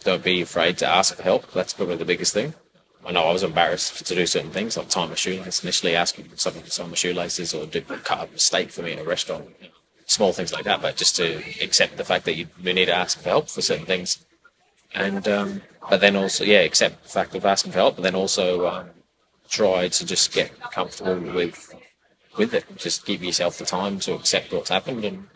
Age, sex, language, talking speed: 20-39, male, English, 235 wpm